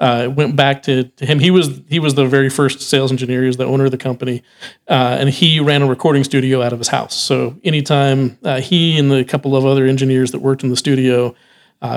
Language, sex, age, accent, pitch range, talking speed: English, male, 40-59, American, 130-145 Hz, 250 wpm